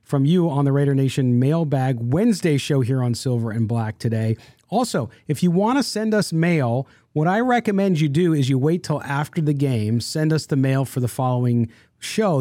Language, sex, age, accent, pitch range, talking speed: English, male, 40-59, American, 125-170 Hz, 210 wpm